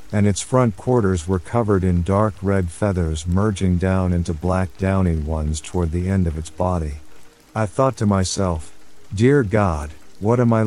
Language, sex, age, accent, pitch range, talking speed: English, male, 50-69, American, 90-110 Hz, 175 wpm